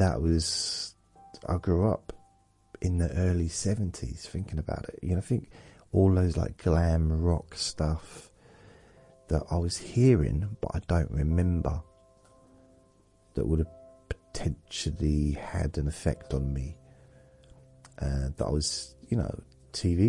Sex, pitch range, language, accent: male, 70-90 Hz, English, British